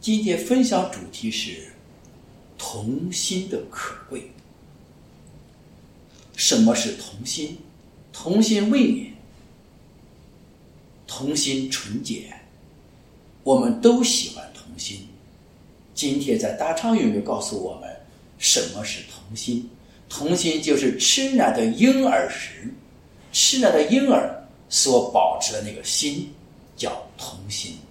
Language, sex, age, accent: English, male, 50-69, Chinese